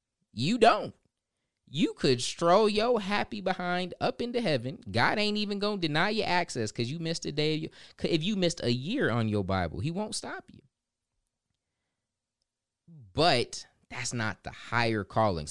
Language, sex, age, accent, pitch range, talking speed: English, male, 20-39, American, 110-175 Hz, 165 wpm